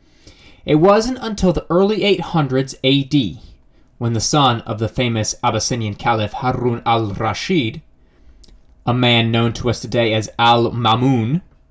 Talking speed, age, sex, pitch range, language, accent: 130 wpm, 20-39, male, 110-170 Hz, English, American